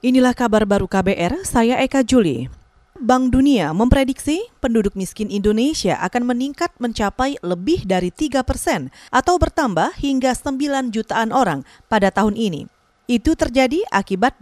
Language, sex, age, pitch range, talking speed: Indonesian, female, 30-49, 205-270 Hz, 135 wpm